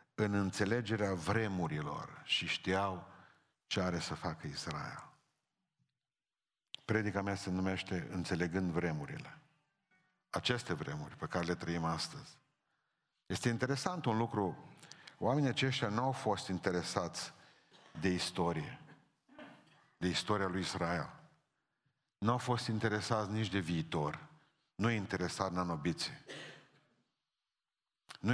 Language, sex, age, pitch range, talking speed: Romanian, male, 50-69, 95-130 Hz, 110 wpm